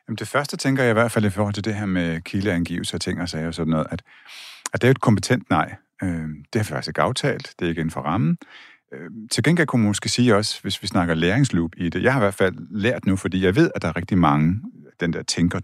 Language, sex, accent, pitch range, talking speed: Danish, male, native, 85-110 Hz, 275 wpm